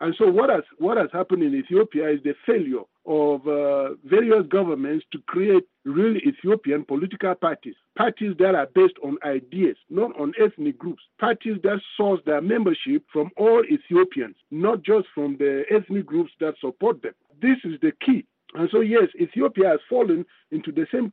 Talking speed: 175 wpm